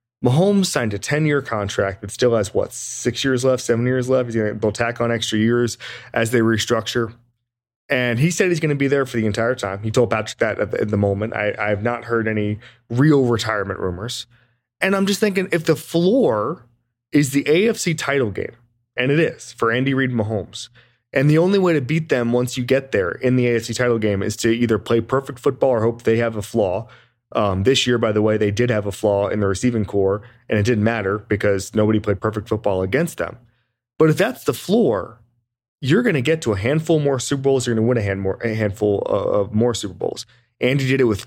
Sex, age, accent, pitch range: male, 20-39, American, 110-130 Hz